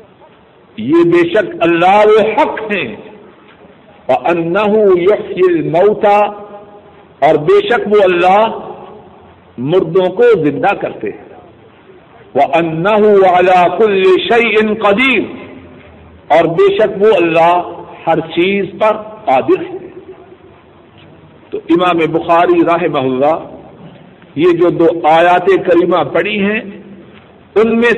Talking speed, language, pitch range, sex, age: 105 wpm, Urdu, 175-235 Hz, male, 50-69